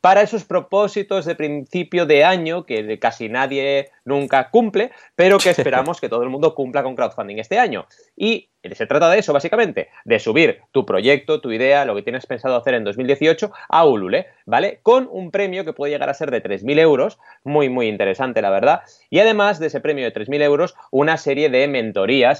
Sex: male